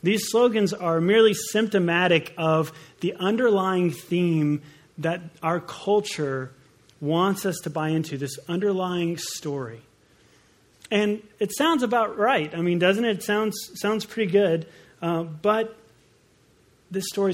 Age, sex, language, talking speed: 30-49, male, English, 130 wpm